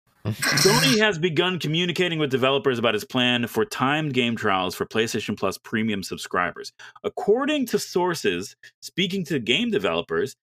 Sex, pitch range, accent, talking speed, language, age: male, 110-160 Hz, American, 145 wpm, English, 30-49